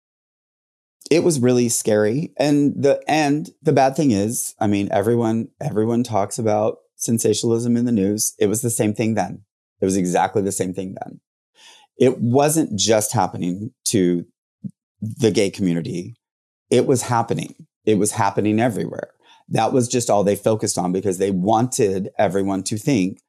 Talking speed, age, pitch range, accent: 160 wpm, 30-49, 100-125 Hz, American